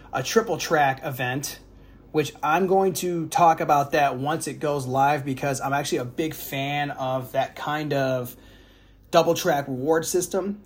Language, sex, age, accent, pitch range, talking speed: English, male, 30-49, American, 130-170 Hz, 165 wpm